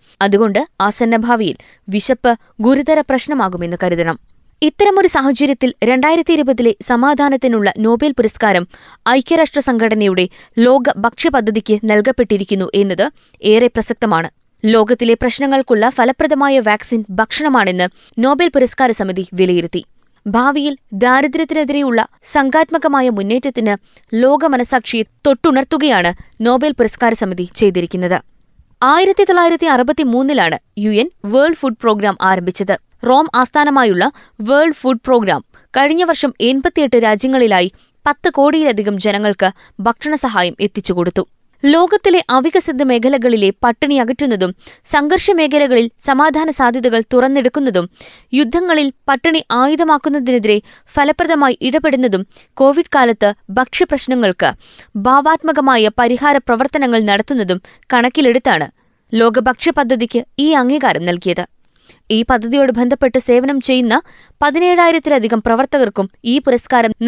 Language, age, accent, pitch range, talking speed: Malayalam, 20-39, native, 215-285 Hz, 90 wpm